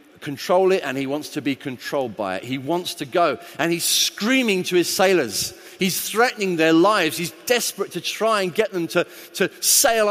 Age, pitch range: 30-49, 155-235 Hz